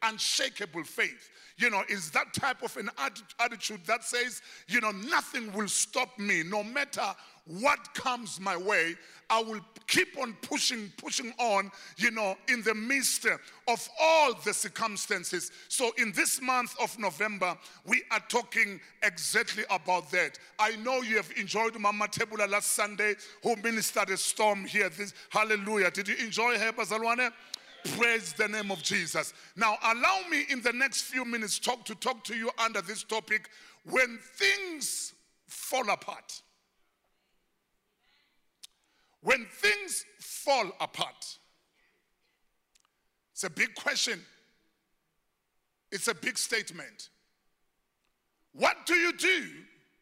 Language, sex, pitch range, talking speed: English, male, 205-255 Hz, 135 wpm